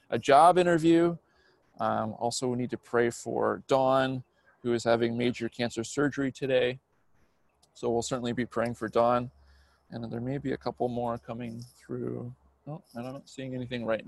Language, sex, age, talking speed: English, male, 30-49, 170 wpm